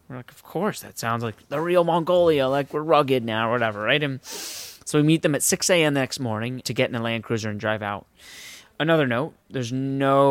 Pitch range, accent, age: 115-135 Hz, American, 20-39